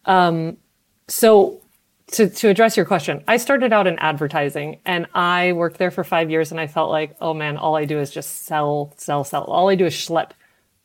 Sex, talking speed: female, 210 wpm